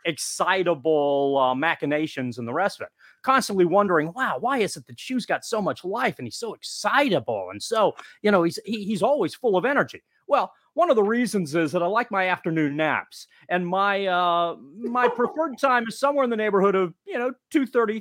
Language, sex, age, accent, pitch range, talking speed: English, male, 30-49, American, 160-235 Hz, 210 wpm